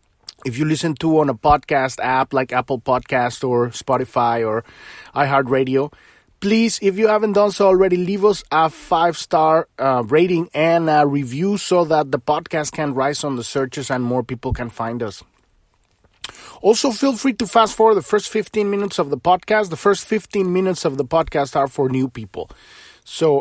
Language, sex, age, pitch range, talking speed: English, male, 30-49, 130-170 Hz, 185 wpm